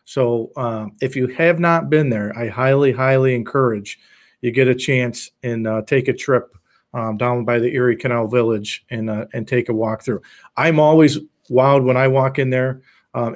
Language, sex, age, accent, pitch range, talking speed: English, male, 40-59, American, 120-135 Hz, 200 wpm